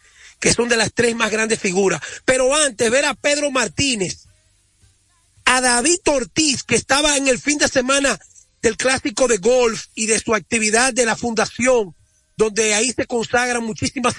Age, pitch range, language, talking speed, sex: 40-59, 215-255 Hz, Spanish, 170 wpm, male